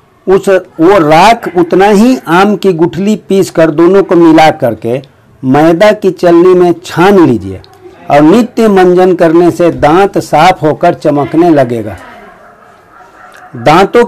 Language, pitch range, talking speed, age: Hindi, 155-195 Hz, 130 wpm, 60-79